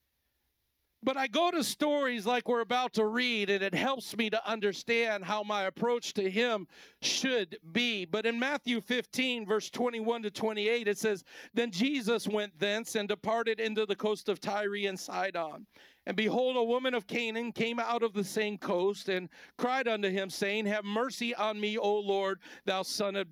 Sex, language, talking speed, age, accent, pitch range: male, English, 185 wpm, 50-69, American, 200-235 Hz